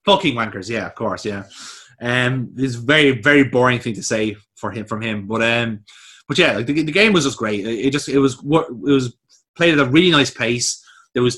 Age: 20-39